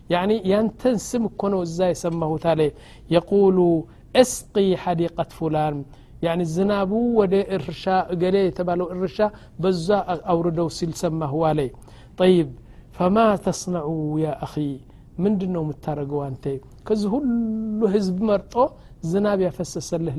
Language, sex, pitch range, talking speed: Amharic, male, 155-195 Hz, 105 wpm